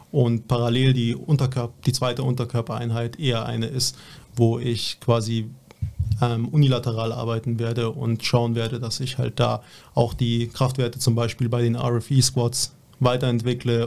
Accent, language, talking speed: German, German, 140 wpm